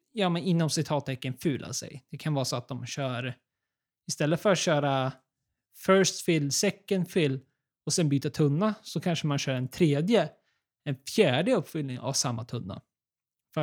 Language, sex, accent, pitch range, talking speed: Swedish, male, native, 135-185 Hz, 165 wpm